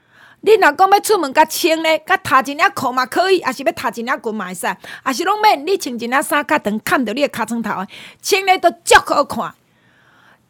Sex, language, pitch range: female, Chinese, 245-360 Hz